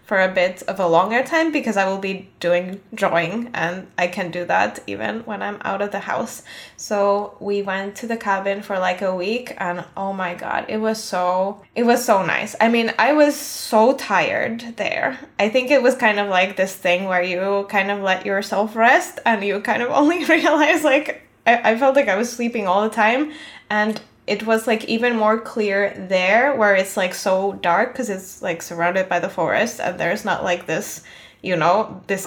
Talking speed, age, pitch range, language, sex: 210 wpm, 10-29, 190-240 Hz, English, female